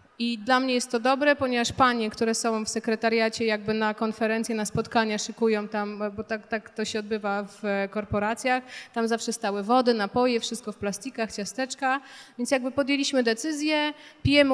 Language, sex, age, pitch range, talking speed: Polish, female, 30-49, 220-260 Hz, 170 wpm